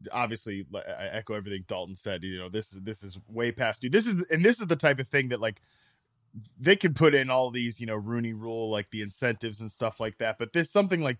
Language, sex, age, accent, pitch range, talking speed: English, male, 20-39, American, 115-145 Hz, 250 wpm